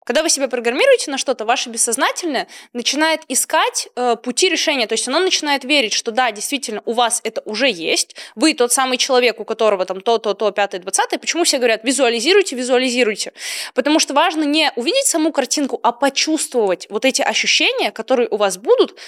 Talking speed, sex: 185 wpm, female